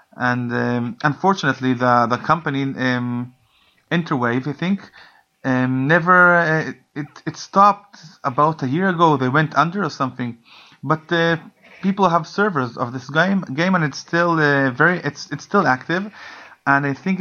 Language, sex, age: English, male, 30-49